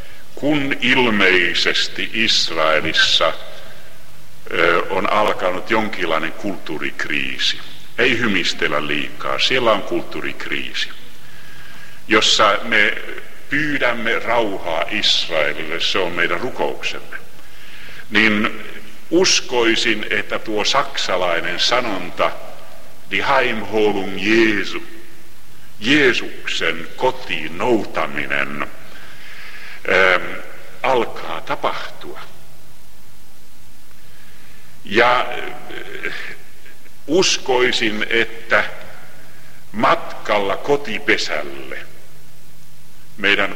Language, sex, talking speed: Finnish, male, 60 wpm